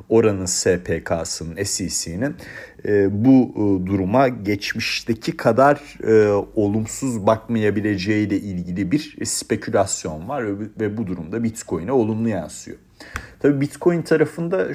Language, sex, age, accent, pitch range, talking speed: Turkish, male, 40-59, native, 95-115 Hz, 95 wpm